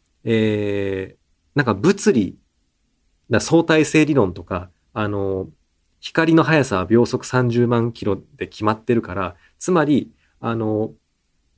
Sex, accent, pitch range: male, native, 95-150 Hz